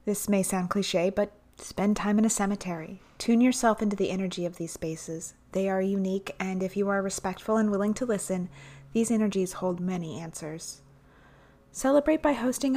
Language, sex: English, female